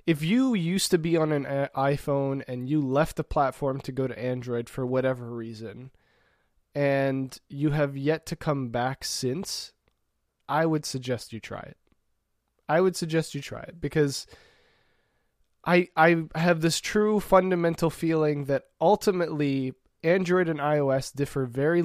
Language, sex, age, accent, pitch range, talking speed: English, male, 20-39, American, 125-155 Hz, 150 wpm